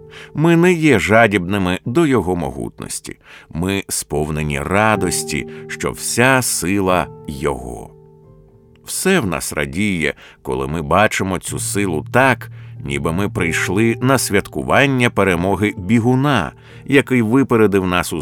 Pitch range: 90-120 Hz